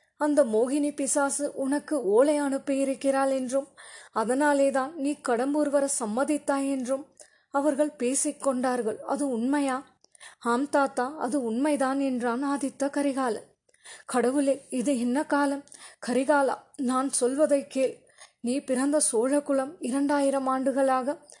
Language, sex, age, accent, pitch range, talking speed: Tamil, female, 20-39, native, 265-295 Hz, 110 wpm